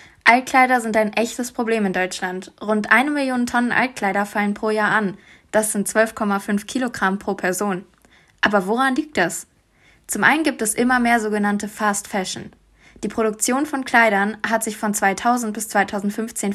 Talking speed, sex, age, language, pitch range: 165 wpm, female, 20-39, German, 205-245 Hz